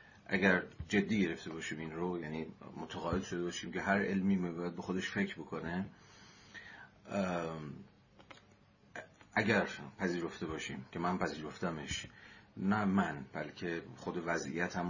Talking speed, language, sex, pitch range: 115 wpm, Persian, male, 80-100 Hz